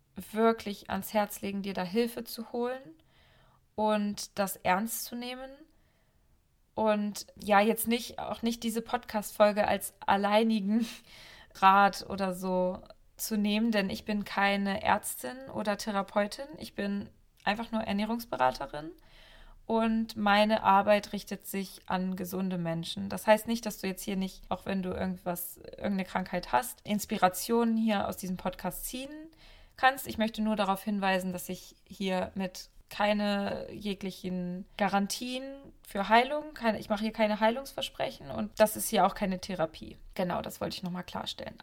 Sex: female